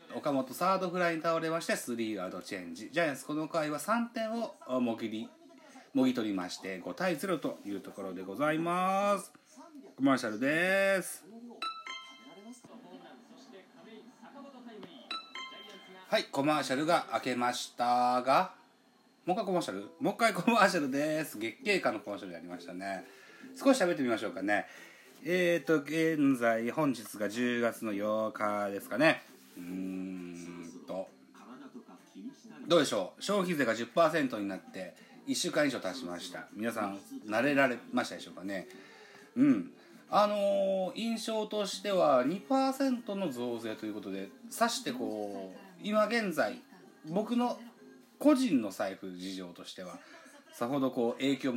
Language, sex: Japanese, male